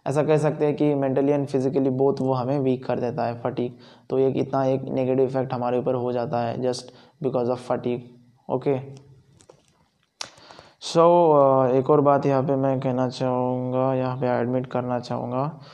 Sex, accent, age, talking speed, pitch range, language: male, native, 20-39, 175 wpm, 130-140 Hz, Hindi